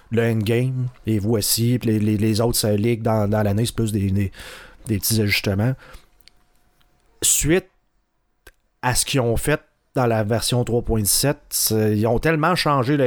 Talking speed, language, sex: 155 wpm, French, male